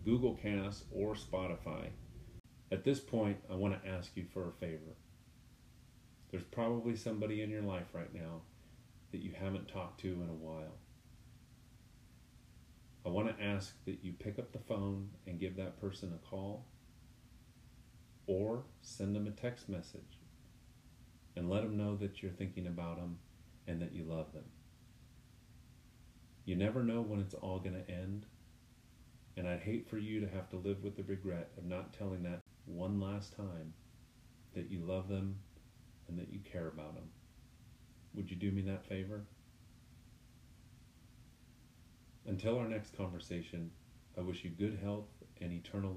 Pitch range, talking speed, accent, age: 90-115 Hz, 160 wpm, American, 40-59